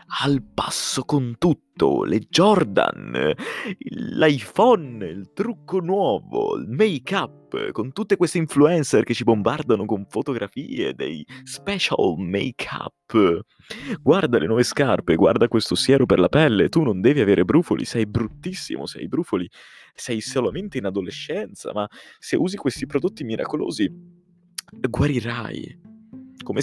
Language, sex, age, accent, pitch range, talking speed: Italian, male, 20-39, native, 110-155 Hz, 125 wpm